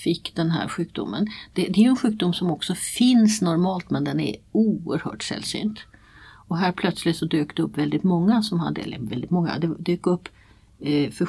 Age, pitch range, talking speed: 60-79, 150-190 Hz, 185 wpm